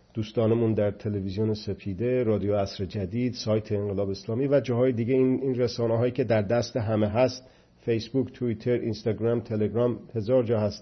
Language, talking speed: Persian, 160 wpm